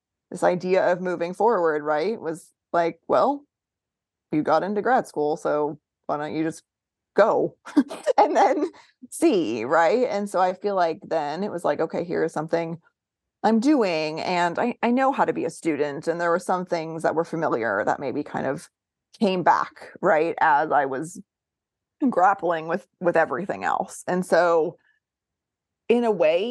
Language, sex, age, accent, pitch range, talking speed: English, female, 30-49, American, 160-225 Hz, 170 wpm